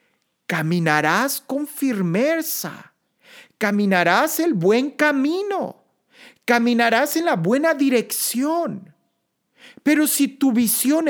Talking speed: 85 wpm